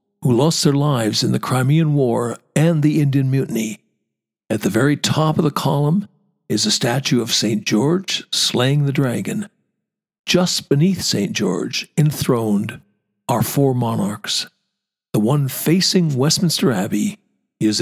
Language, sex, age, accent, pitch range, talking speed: English, male, 60-79, American, 120-180 Hz, 140 wpm